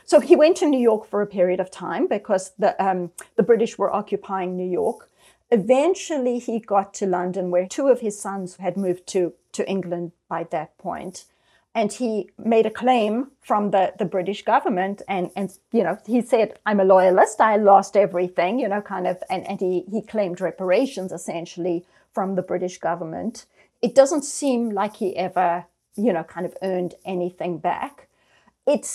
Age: 40-59